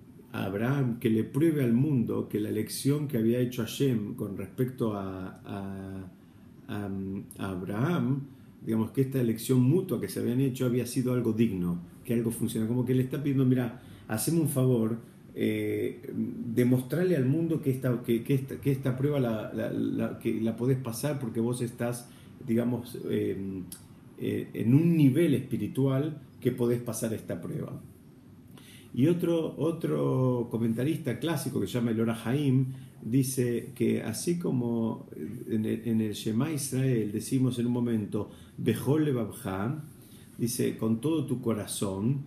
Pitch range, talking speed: 110-130 Hz, 150 wpm